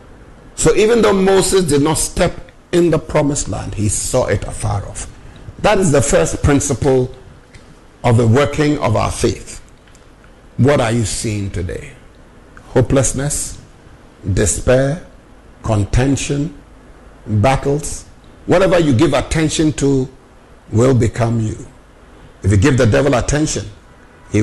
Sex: male